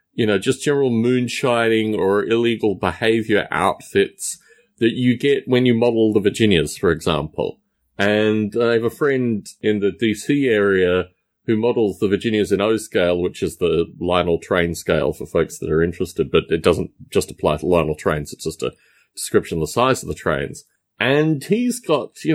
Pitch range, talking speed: 90-125 Hz, 185 wpm